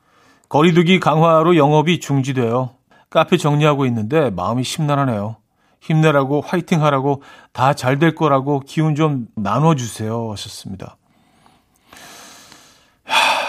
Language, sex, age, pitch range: Korean, male, 40-59, 110-155 Hz